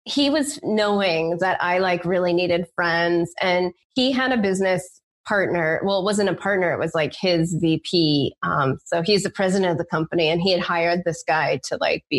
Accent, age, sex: American, 20-39, female